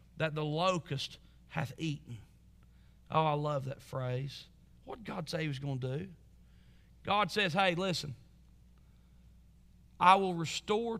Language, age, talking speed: English, 40-59, 140 wpm